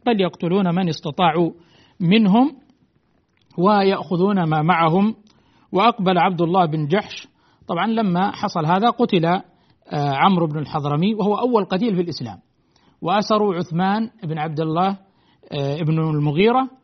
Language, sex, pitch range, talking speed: Arabic, male, 155-205 Hz, 120 wpm